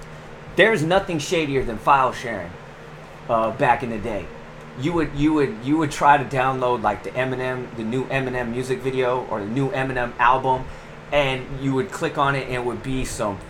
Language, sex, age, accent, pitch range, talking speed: English, male, 30-49, American, 125-160 Hz, 195 wpm